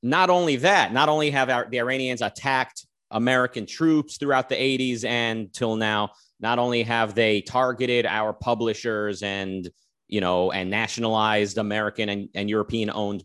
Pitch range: 100-125 Hz